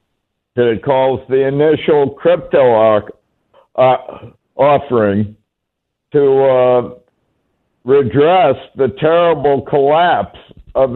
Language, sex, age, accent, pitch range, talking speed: English, male, 60-79, American, 120-145 Hz, 80 wpm